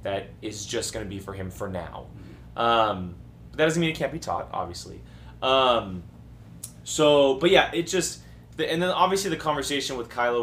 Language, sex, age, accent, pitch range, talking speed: English, male, 20-39, American, 100-130 Hz, 180 wpm